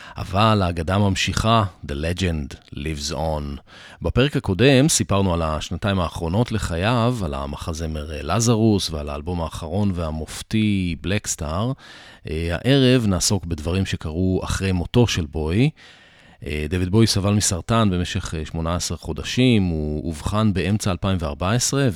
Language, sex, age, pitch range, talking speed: English, male, 40-59, 80-110 Hz, 120 wpm